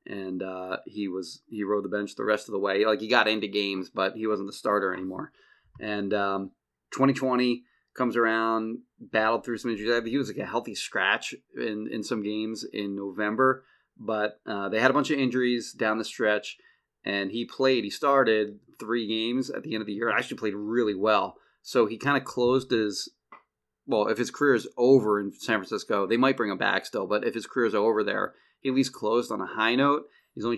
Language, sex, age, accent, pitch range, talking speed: English, male, 30-49, American, 105-120 Hz, 220 wpm